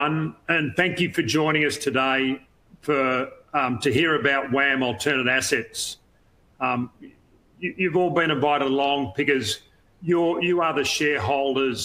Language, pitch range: English, 130-155 Hz